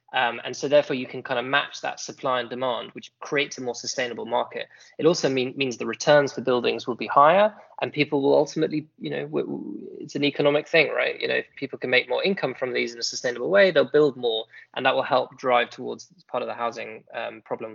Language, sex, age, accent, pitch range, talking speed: English, male, 20-39, British, 125-155 Hz, 235 wpm